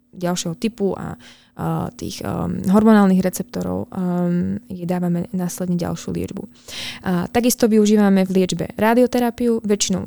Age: 20-39